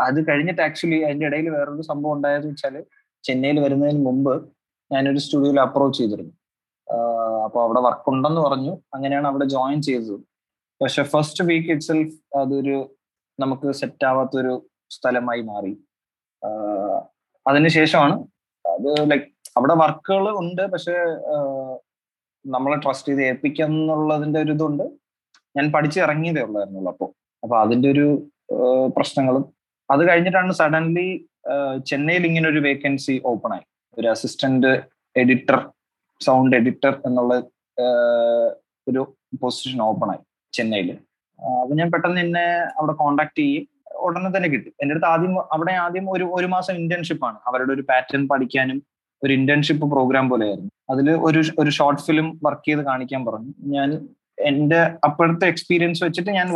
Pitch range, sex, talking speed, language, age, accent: 135-165 Hz, male, 85 wpm, English, 20-39, Indian